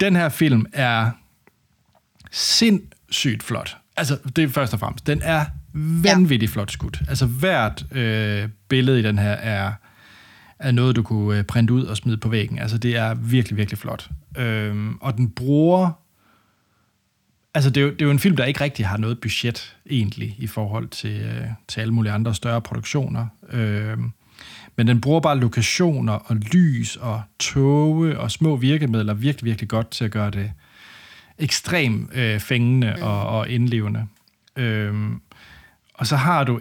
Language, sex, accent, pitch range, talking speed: Danish, male, native, 110-140 Hz, 165 wpm